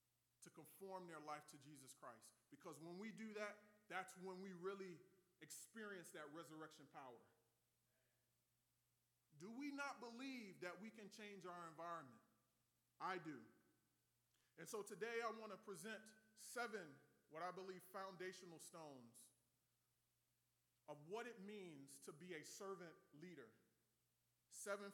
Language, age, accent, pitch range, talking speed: English, 30-49, American, 145-210 Hz, 130 wpm